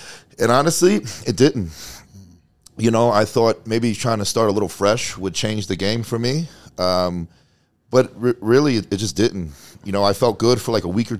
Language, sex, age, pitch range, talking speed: English, male, 40-59, 95-115 Hz, 210 wpm